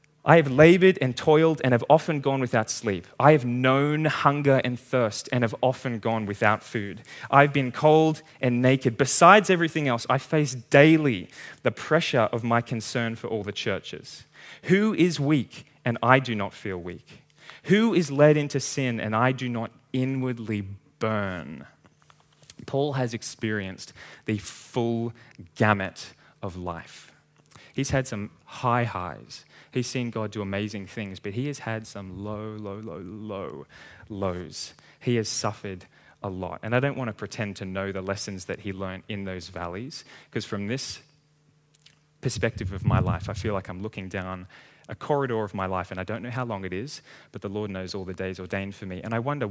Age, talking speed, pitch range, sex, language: 20-39, 185 wpm, 100-135 Hz, male, English